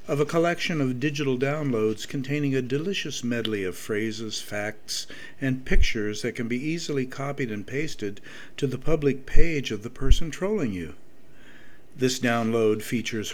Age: 50-69